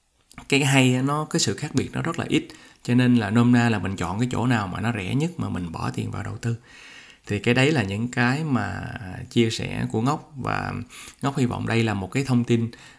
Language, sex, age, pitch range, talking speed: Vietnamese, male, 20-39, 110-130 Hz, 250 wpm